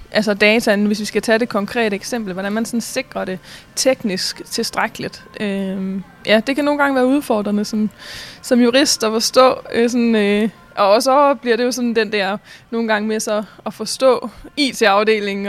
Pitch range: 200-235 Hz